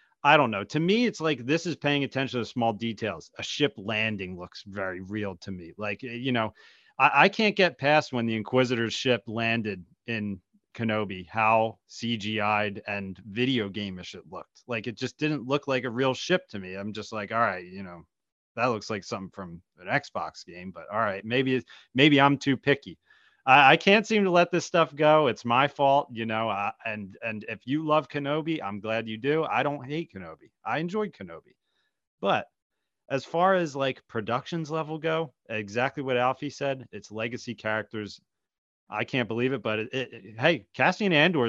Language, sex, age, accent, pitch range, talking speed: English, male, 30-49, American, 105-150 Hz, 195 wpm